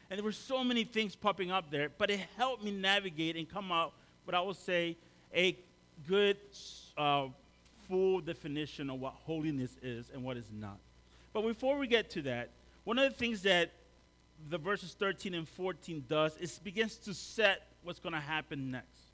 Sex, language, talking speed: male, English, 190 wpm